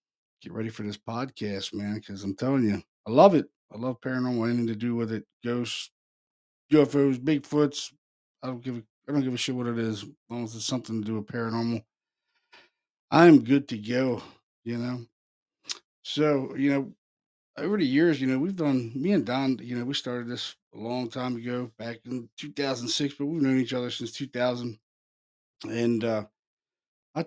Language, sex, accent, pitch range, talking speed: English, male, American, 110-135 Hz, 195 wpm